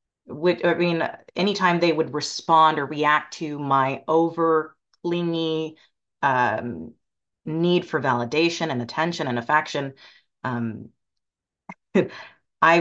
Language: English